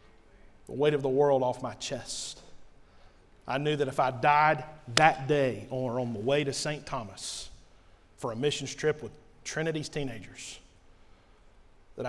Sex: male